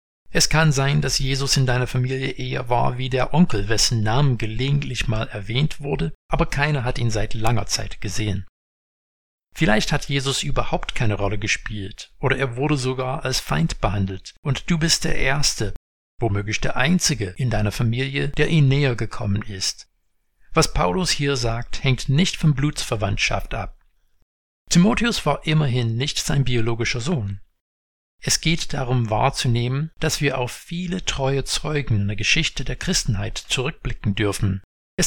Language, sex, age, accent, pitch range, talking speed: German, male, 60-79, German, 105-145 Hz, 155 wpm